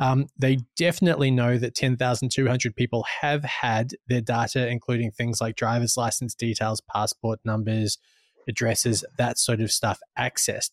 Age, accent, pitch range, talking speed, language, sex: 20-39, Australian, 115-130 Hz, 155 wpm, English, male